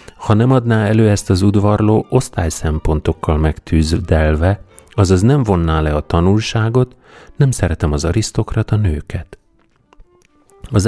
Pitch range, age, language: 80-110 Hz, 40-59, Hungarian